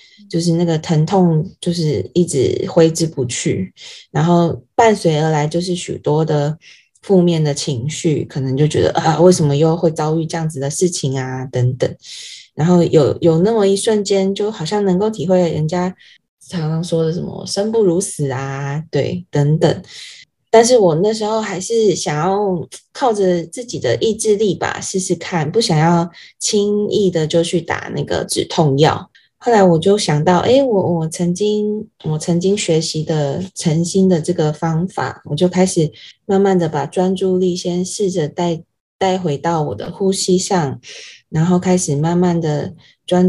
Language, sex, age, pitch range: Chinese, female, 20-39, 160-195 Hz